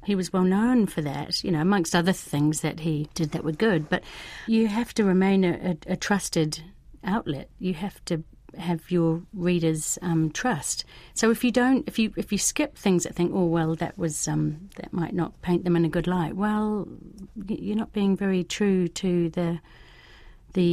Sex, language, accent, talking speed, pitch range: female, English, British, 205 wpm, 165-200 Hz